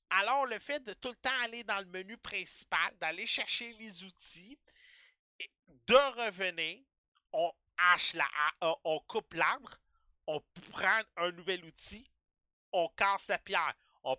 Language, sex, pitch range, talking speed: French, male, 190-280 Hz, 145 wpm